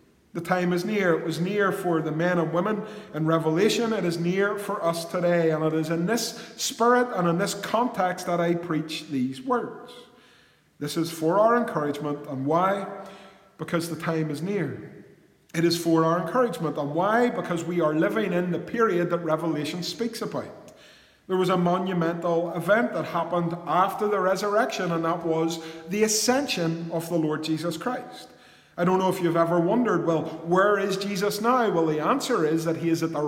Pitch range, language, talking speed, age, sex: 160-200 Hz, English, 190 wpm, 30-49, male